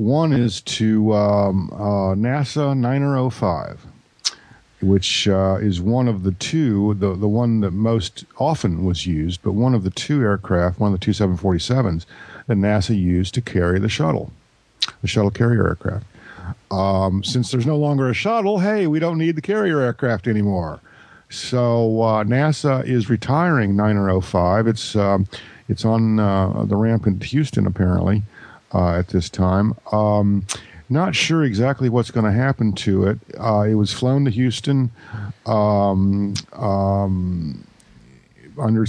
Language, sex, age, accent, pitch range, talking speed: English, male, 50-69, American, 100-120 Hz, 150 wpm